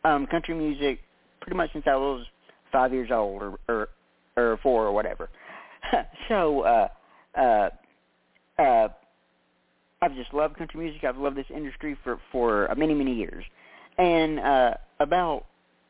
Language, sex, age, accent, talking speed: English, male, 40-59, American, 145 wpm